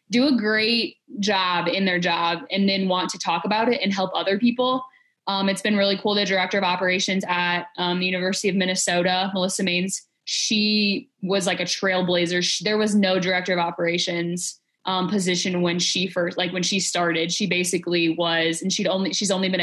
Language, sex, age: English, female, 20-39